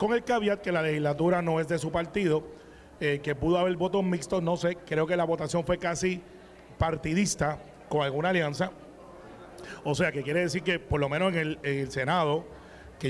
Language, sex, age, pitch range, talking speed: Spanish, male, 30-49, 150-185 Hz, 195 wpm